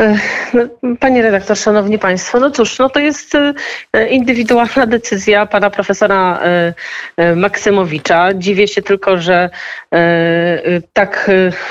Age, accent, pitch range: 40-59, native, 180-225 Hz